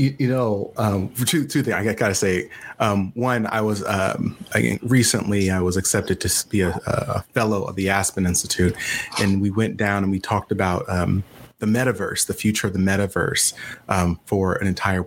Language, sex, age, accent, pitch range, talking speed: English, male, 30-49, American, 100-125 Hz, 190 wpm